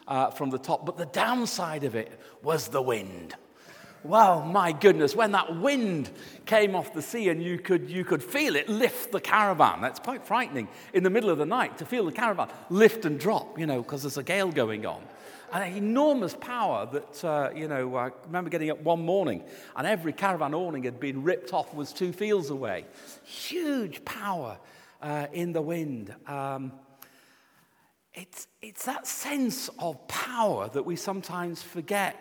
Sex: male